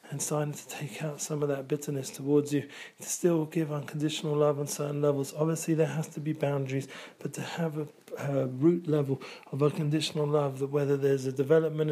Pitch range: 140-160 Hz